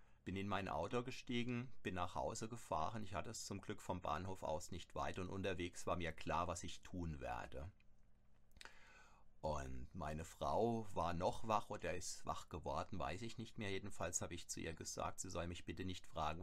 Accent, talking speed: German, 195 wpm